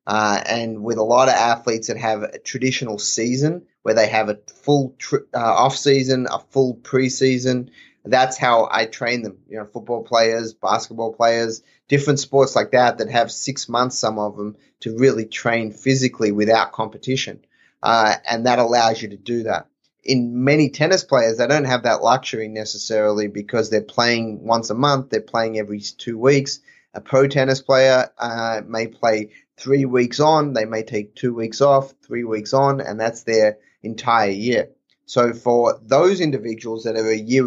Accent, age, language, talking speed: Australian, 20-39, English, 180 wpm